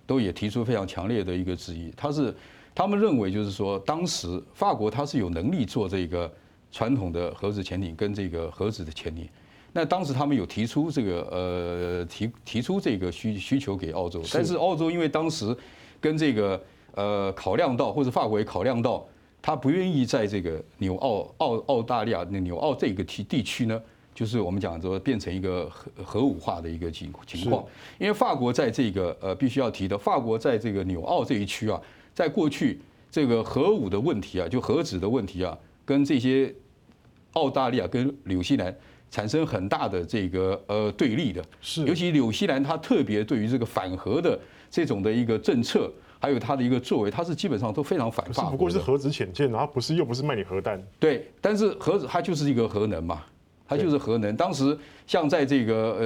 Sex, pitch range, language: male, 95-135 Hz, Chinese